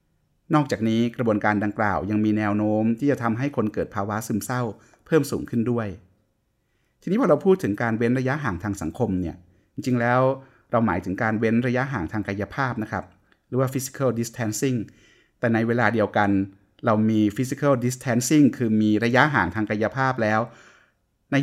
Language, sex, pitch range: Thai, male, 105-130 Hz